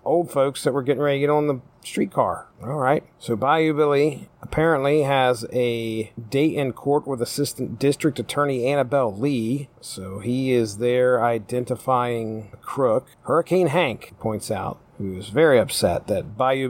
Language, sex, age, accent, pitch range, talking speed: English, male, 40-59, American, 115-140 Hz, 160 wpm